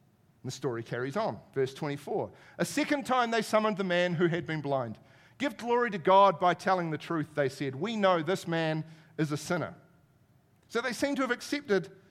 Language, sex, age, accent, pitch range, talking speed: English, male, 40-59, Australian, 145-210 Hz, 200 wpm